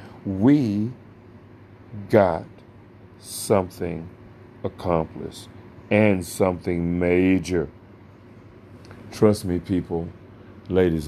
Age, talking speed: 50-69, 60 wpm